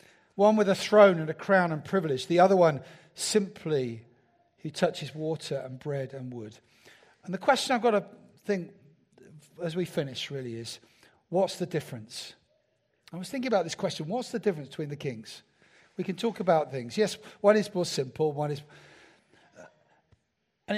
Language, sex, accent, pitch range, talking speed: English, male, British, 145-205 Hz, 175 wpm